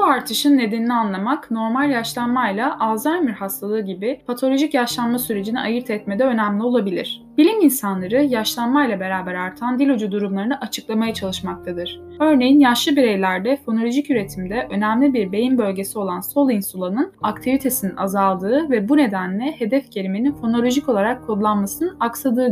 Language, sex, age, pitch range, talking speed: Turkish, female, 10-29, 195-265 Hz, 130 wpm